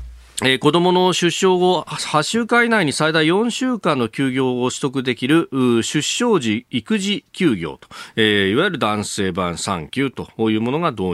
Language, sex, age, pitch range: Japanese, male, 40-59, 105-155 Hz